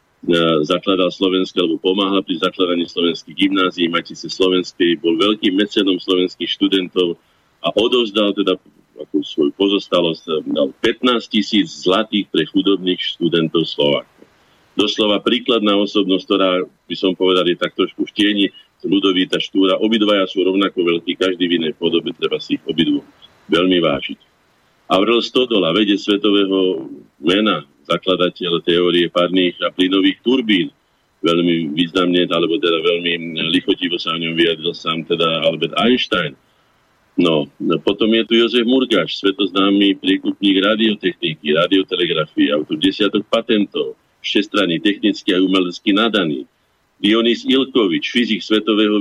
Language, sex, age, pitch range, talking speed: Slovak, male, 50-69, 85-105 Hz, 125 wpm